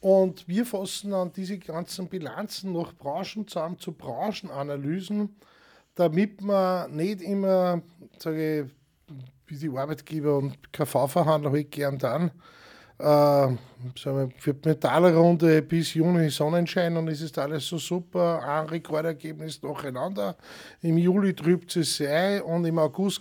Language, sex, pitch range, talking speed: German, male, 150-185 Hz, 130 wpm